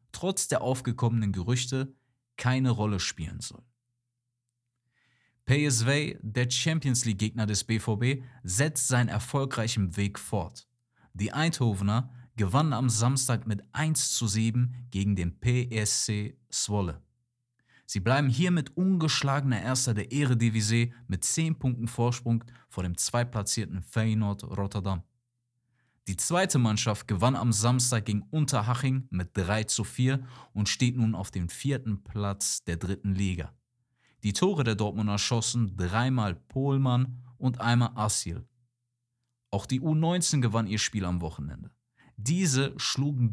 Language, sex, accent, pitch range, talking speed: German, male, German, 105-130 Hz, 125 wpm